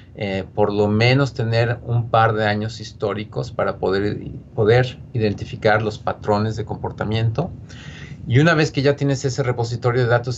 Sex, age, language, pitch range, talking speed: male, 40-59, Spanish, 105-125 Hz, 160 wpm